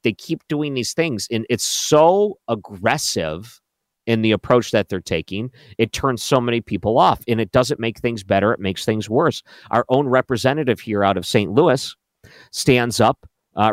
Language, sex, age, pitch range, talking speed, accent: English, male, 50-69, 105-130 Hz, 185 wpm, American